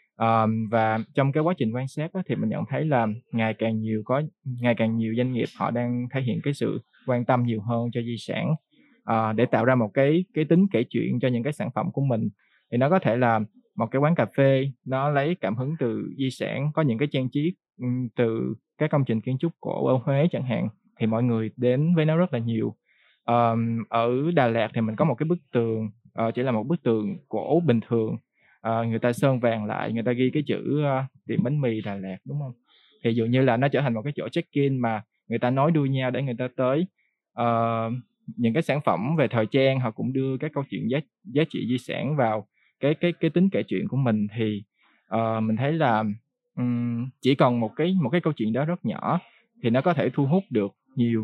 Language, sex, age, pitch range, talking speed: Vietnamese, male, 20-39, 115-145 Hz, 245 wpm